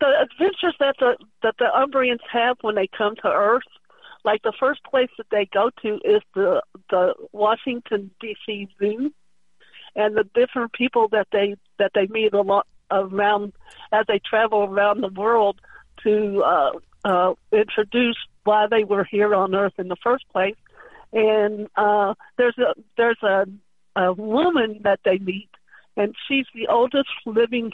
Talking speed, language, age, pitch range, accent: 160 wpm, English, 60-79, 205-250 Hz, American